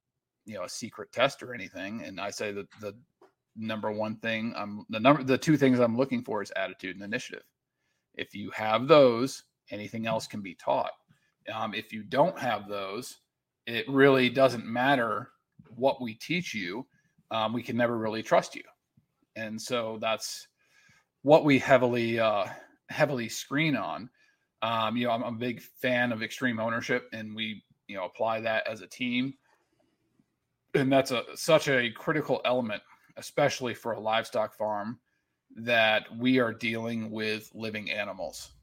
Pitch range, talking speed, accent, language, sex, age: 110-125 Hz, 165 wpm, American, English, male, 40-59